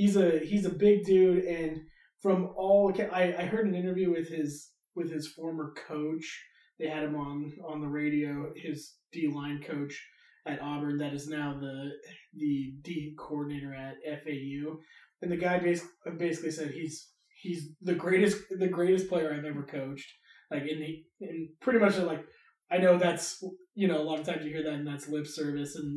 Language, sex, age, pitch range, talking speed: English, male, 20-39, 145-175 Hz, 190 wpm